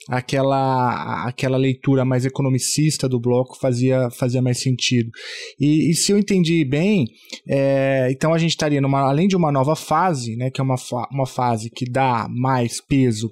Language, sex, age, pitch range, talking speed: Portuguese, male, 20-39, 130-165 Hz, 170 wpm